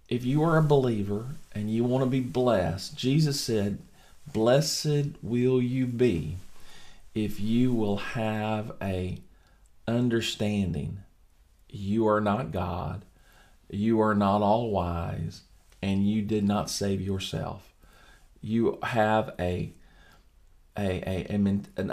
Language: English